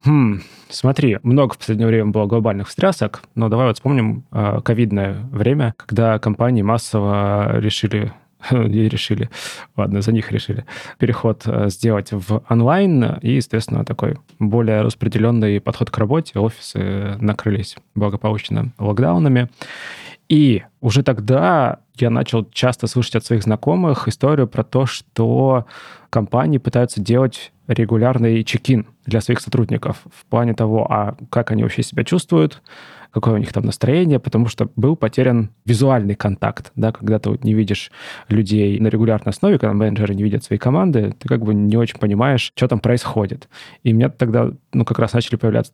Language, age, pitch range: Russian, 20-39, 110-130 Hz